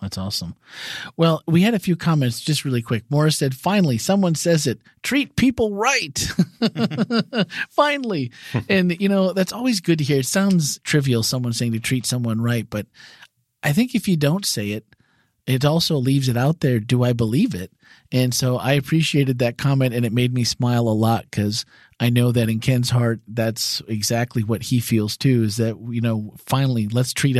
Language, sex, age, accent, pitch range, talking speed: English, male, 40-59, American, 115-145 Hz, 195 wpm